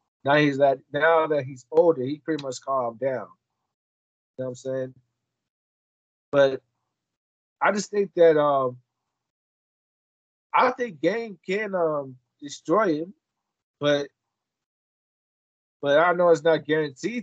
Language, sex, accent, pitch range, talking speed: English, male, American, 140-195 Hz, 130 wpm